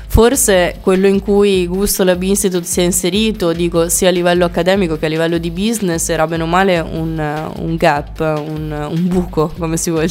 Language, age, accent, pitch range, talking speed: Italian, 20-39, native, 165-190 Hz, 195 wpm